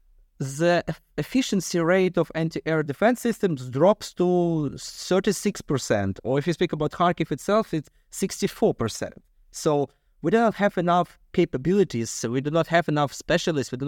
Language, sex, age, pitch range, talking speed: English, male, 30-49, 135-180 Hz, 145 wpm